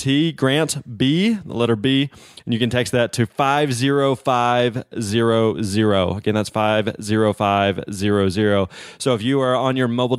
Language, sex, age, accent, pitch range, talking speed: English, male, 20-39, American, 110-140 Hz, 135 wpm